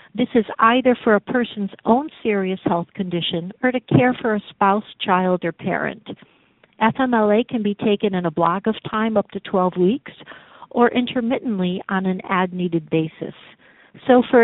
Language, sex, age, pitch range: English, female, 50-69, 185-235 Hz